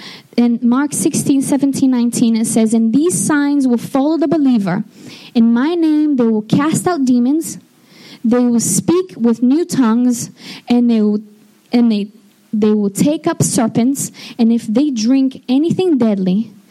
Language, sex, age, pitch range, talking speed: English, female, 20-39, 215-260 Hz, 160 wpm